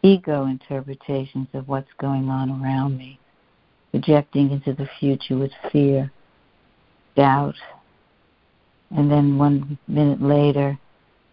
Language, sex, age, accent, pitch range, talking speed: English, female, 60-79, American, 135-150 Hz, 105 wpm